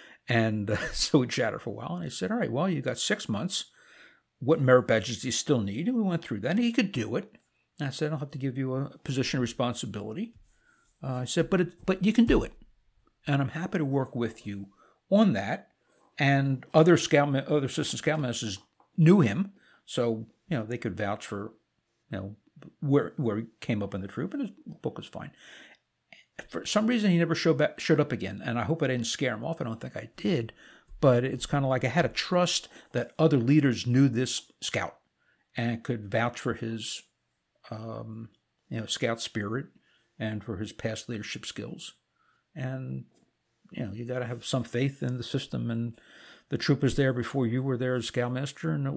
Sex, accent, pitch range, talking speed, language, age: male, American, 115-155 Hz, 215 wpm, English, 60-79